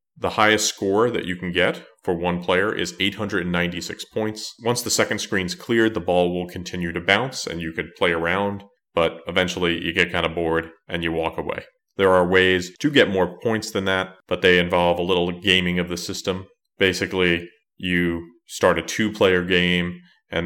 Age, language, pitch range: 30-49, English, 85-95 Hz